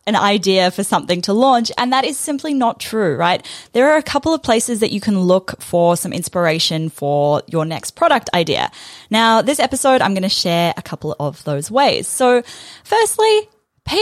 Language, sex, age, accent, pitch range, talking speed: English, female, 10-29, Australian, 170-235 Hz, 195 wpm